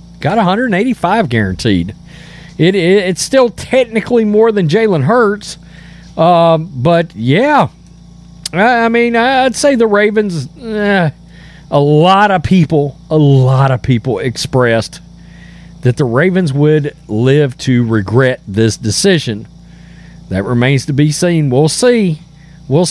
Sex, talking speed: male, 125 wpm